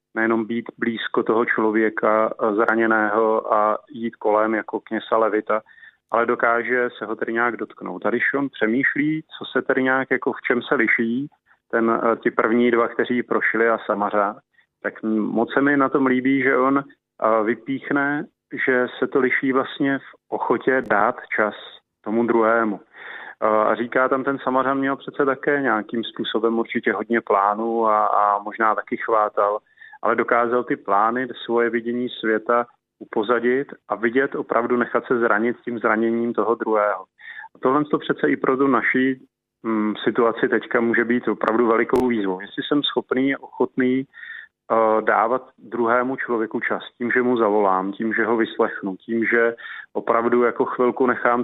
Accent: native